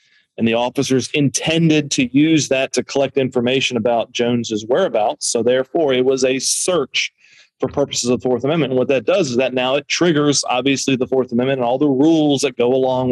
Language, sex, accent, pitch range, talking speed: English, male, American, 120-145 Hz, 205 wpm